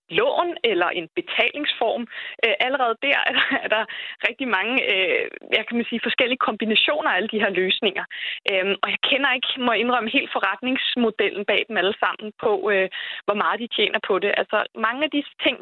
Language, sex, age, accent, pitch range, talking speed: Danish, female, 20-39, native, 195-275 Hz, 175 wpm